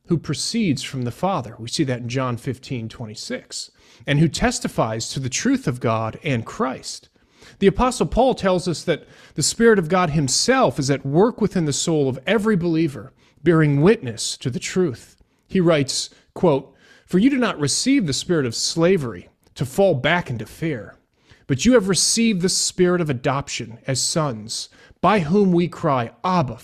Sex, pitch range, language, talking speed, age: male, 125-180 Hz, English, 180 wpm, 40-59